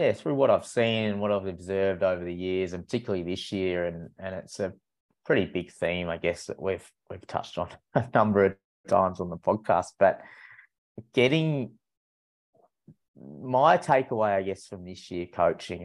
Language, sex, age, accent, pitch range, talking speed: English, male, 20-39, Australian, 90-105 Hz, 175 wpm